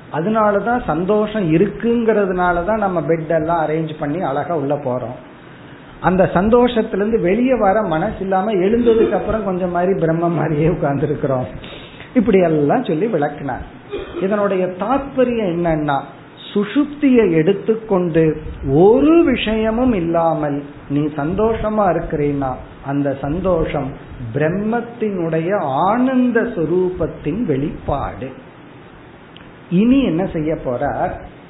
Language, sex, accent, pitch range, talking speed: Tamil, male, native, 150-215 Hz, 65 wpm